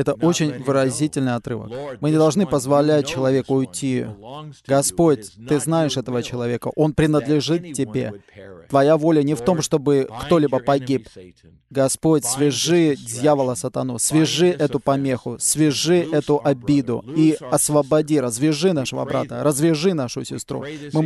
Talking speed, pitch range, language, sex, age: 130 wpm, 130-155 Hz, Russian, male, 20-39